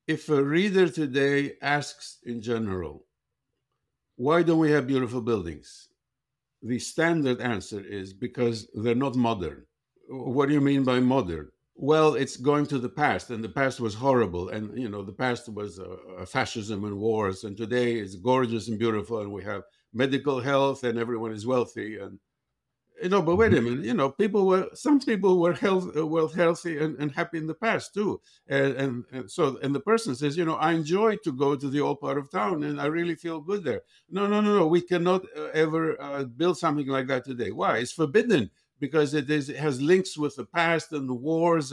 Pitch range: 120-160 Hz